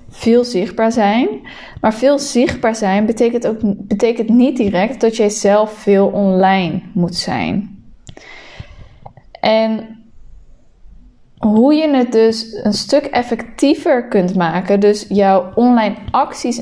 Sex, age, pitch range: female, 20-39, 200-245 Hz